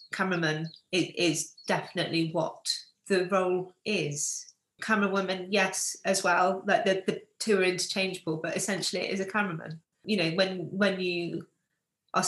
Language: English